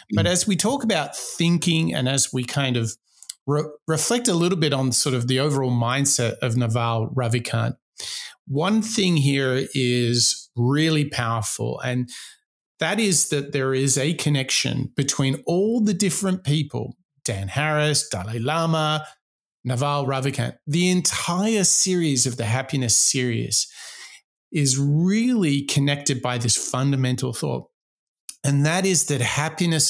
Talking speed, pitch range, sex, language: 135 wpm, 130-165 Hz, male, English